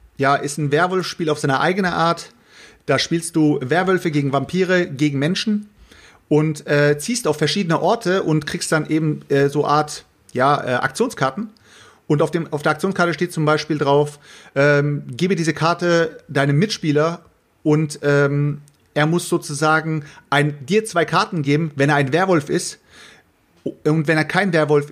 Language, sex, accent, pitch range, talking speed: German, male, German, 140-165 Hz, 165 wpm